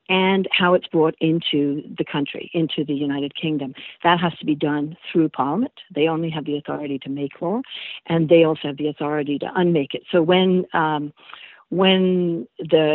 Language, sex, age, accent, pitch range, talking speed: English, female, 50-69, American, 150-180 Hz, 185 wpm